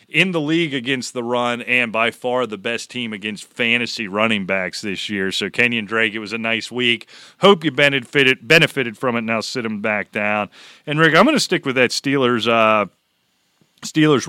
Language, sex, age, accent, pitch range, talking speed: English, male, 40-59, American, 110-135 Hz, 200 wpm